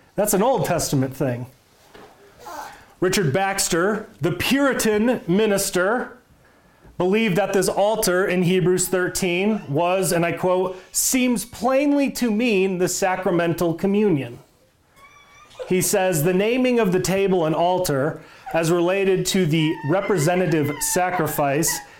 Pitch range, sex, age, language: 170-210 Hz, male, 30-49, English